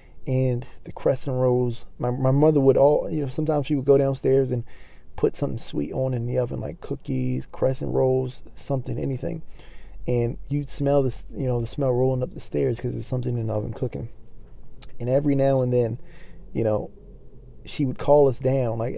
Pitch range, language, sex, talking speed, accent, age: 115-140 Hz, English, male, 195 wpm, American, 20-39